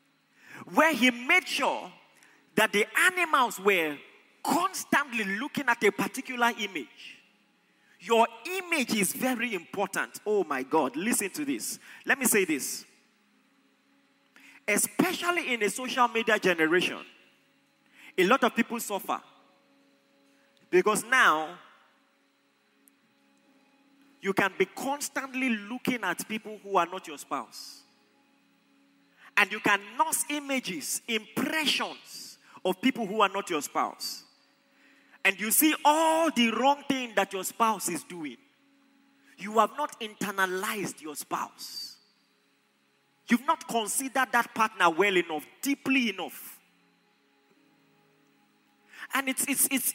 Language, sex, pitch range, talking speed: English, male, 205-280 Hz, 120 wpm